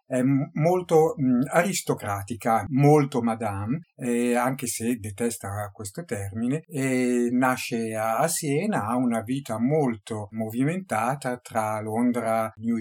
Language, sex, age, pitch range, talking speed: Italian, male, 50-69, 110-125 Hz, 110 wpm